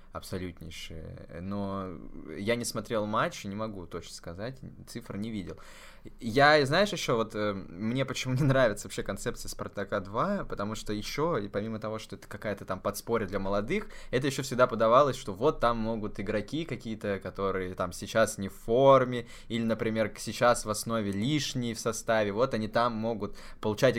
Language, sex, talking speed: Russian, male, 170 wpm